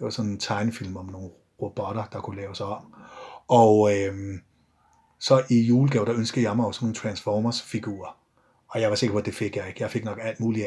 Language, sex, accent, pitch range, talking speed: Danish, male, native, 105-130 Hz, 225 wpm